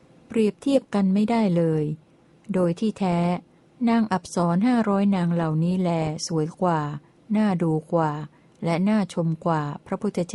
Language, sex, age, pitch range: Thai, female, 60-79, 165-195 Hz